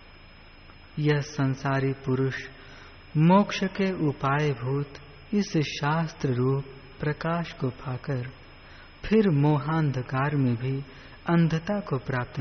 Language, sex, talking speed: Hindi, female, 95 wpm